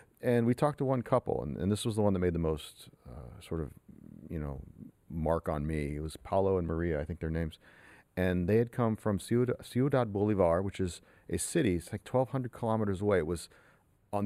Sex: male